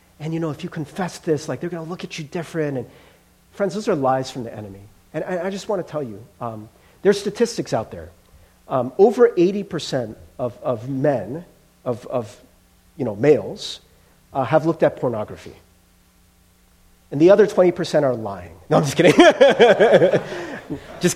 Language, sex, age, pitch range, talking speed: English, male, 40-59, 120-195 Hz, 180 wpm